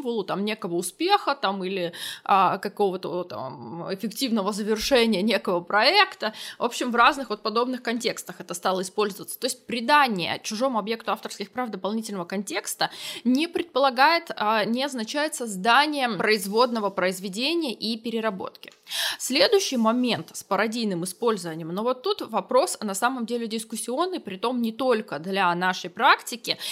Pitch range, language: 200-265 Hz, Russian